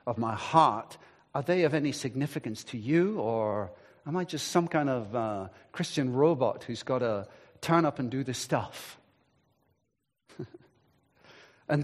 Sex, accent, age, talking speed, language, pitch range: male, British, 40-59, 150 wpm, English, 150-235 Hz